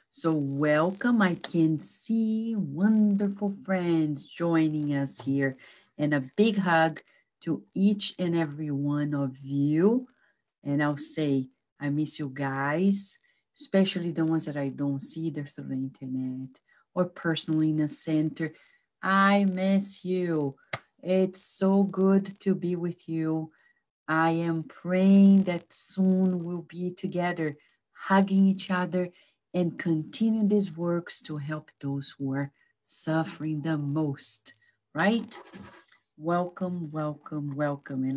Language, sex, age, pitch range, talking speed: English, female, 40-59, 150-195 Hz, 125 wpm